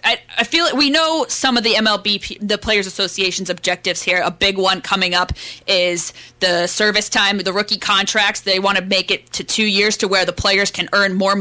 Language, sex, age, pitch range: English, female, 10-29, 185-220 Hz